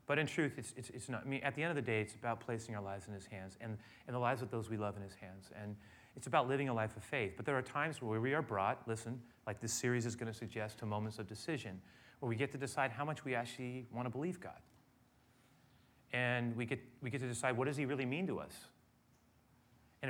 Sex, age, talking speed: male, 30-49, 270 wpm